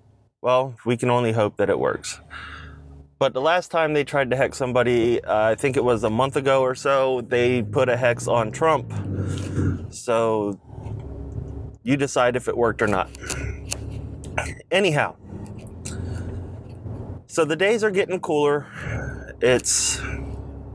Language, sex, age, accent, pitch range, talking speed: English, male, 30-49, American, 105-135 Hz, 140 wpm